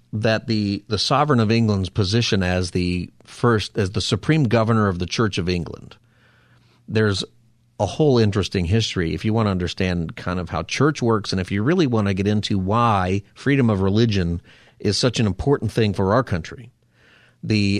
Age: 40-59